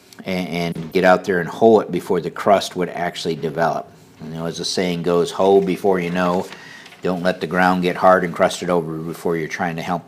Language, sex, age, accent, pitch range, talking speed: English, male, 50-69, American, 85-95 Hz, 220 wpm